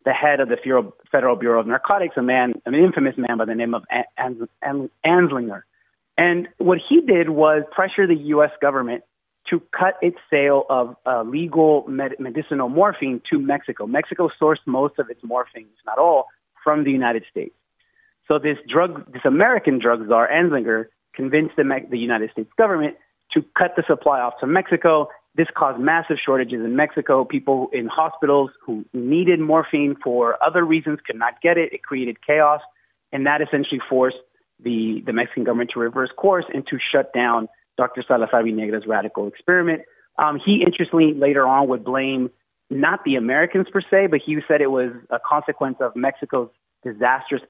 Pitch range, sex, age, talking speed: 120-160 Hz, male, 30-49, 175 wpm